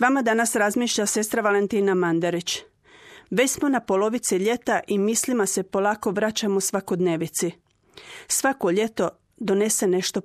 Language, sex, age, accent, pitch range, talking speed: Croatian, female, 40-59, native, 180-215 Hz, 125 wpm